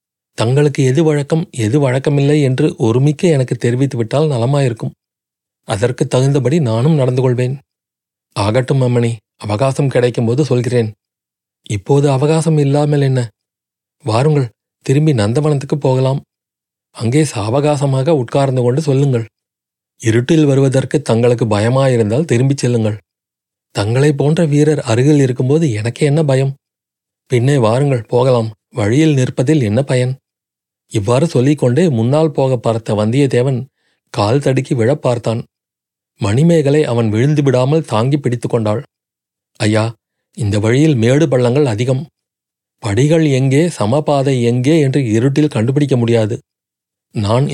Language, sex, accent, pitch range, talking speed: Tamil, male, native, 115-150 Hz, 110 wpm